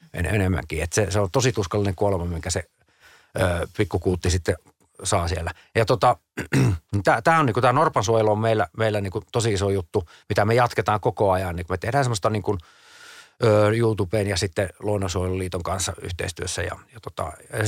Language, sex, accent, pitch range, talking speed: Finnish, male, native, 95-120 Hz, 165 wpm